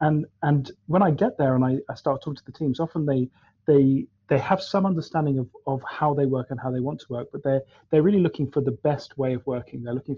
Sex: male